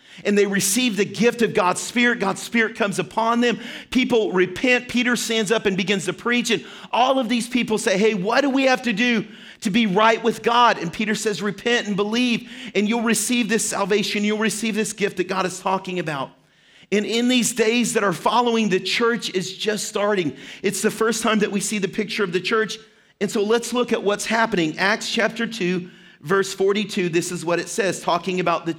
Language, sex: English, male